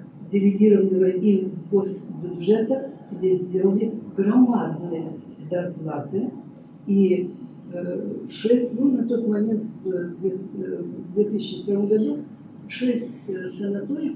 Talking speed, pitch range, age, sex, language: 90 wpm, 185-230 Hz, 50-69, female, Russian